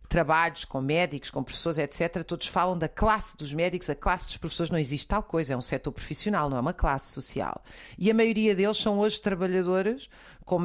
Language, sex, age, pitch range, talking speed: Portuguese, female, 40-59, 160-210 Hz, 210 wpm